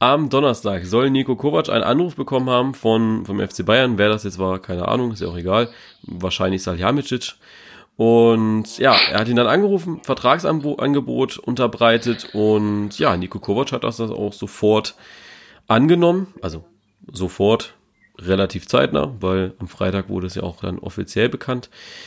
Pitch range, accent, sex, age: 95-125 Hz, German, male, 30-49